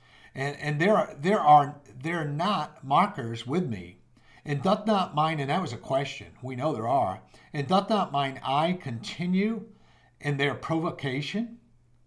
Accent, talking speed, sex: American, 170 wpm, male